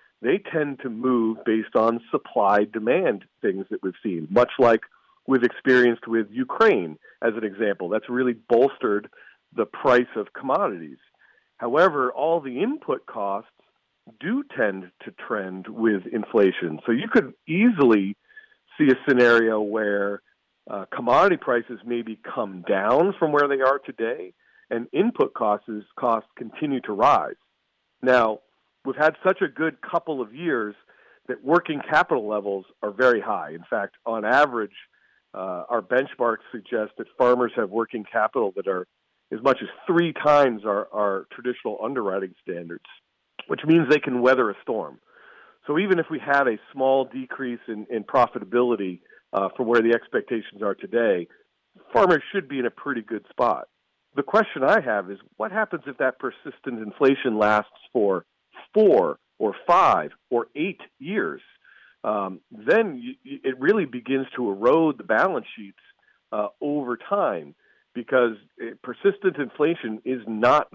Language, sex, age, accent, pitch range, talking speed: English, male, 50-69, American, 110-150 Hz, 150 wpm